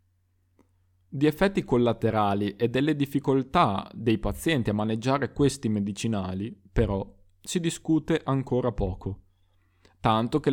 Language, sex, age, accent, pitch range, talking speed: Italian, male, 20-39, native, 100-140 Hz, 110 wpm